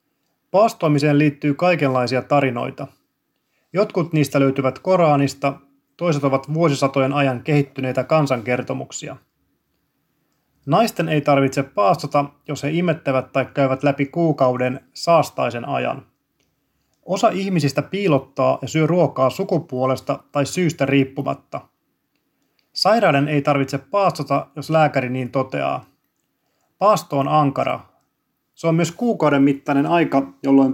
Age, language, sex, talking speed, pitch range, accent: 30-49, Finnish, male, 105 wpm, 135-160 Hz, native